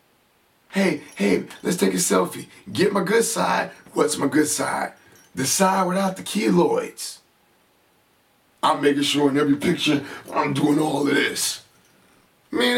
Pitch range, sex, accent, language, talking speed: 145-215 Hz, male, American, English, 145 wpm